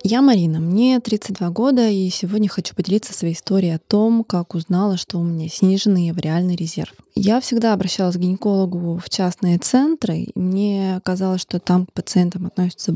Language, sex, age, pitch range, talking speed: Russian, female, 20-39, 180-210 Hz, 165 wpm